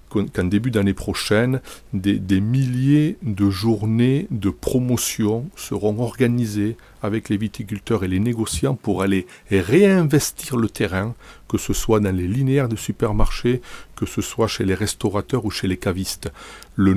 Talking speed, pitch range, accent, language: 155 wpm, 100-125 Hz, French, French